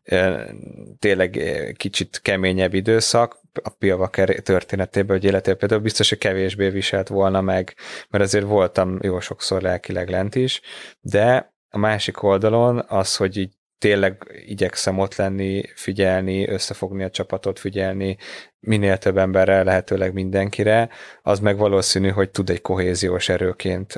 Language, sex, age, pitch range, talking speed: Hungarian, male, 20-39, 95-105 Hz, 130 wpm